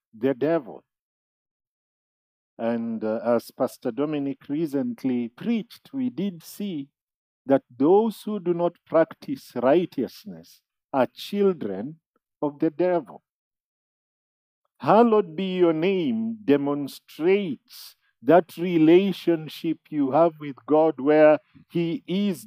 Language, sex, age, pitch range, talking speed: English, male, 50-69, 135-185 Hz, 100 wpm